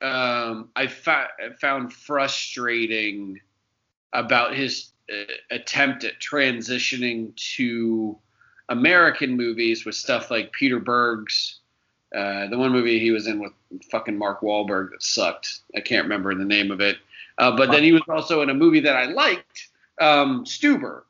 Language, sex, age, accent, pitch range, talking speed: English, male, 30-49, American, 115-155 Hz, 150 wpm